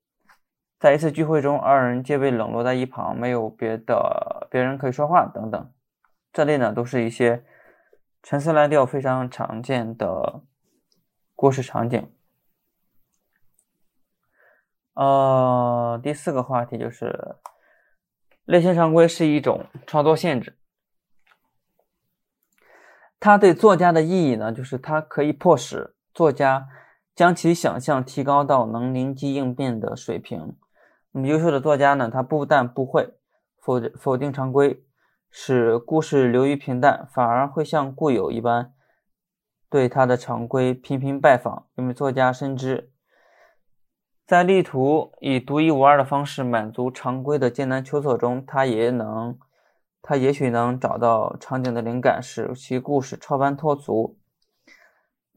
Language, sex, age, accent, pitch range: Chinese, male, 20-39, native, 125-150 Hz